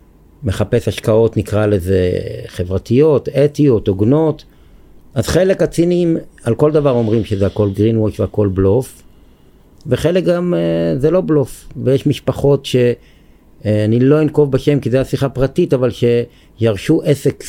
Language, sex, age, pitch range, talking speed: Hebrew, male, 50-69, 100-150 Hz, 125 wpm